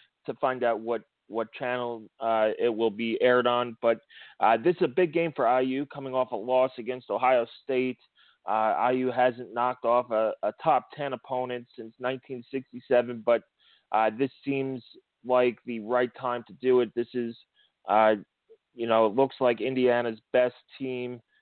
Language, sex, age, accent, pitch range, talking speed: English, male, 30-49, American, 115-130 Hz, 175 wpm